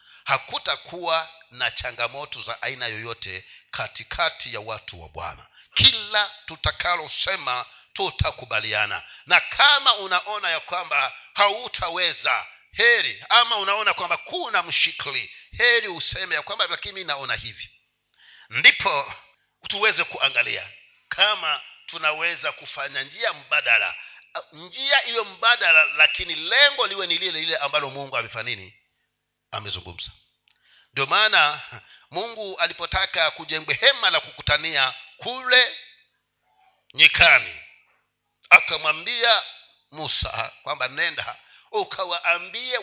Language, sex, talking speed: Swahili, male, 100 wpm